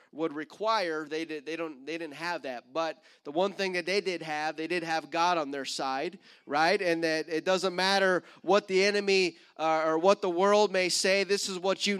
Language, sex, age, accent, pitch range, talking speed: English, male, 30-49, American, 160-200 Hz, 225 wpm